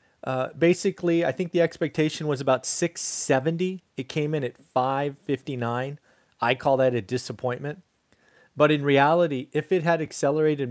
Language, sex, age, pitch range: English, male, 30-49, 115-145 Hz